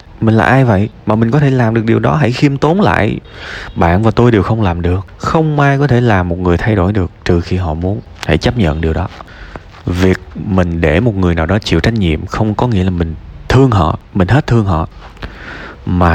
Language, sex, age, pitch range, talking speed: Vietnamese, male, 20-39, 85-110 Hz, 240 wpm